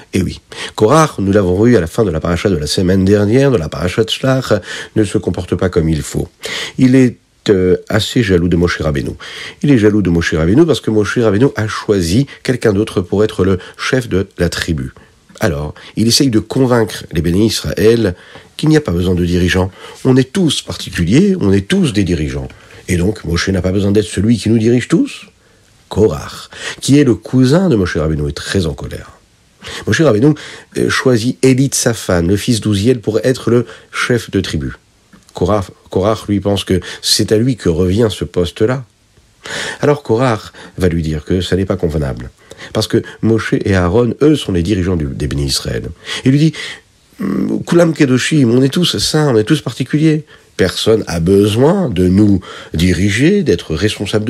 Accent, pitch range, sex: French, 90-125 Hz, male